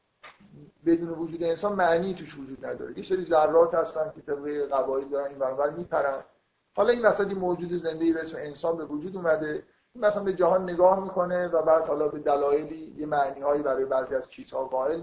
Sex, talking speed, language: male, 185 wpm, Persian